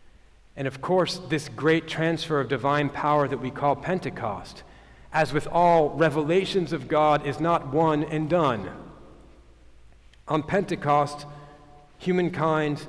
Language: English